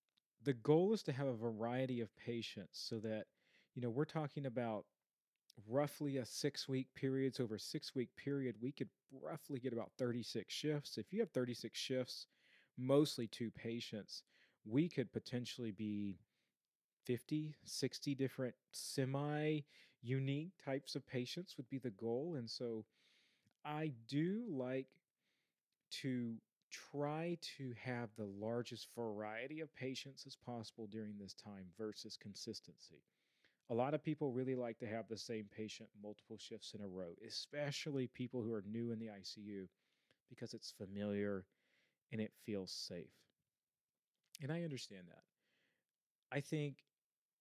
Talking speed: 145 wpm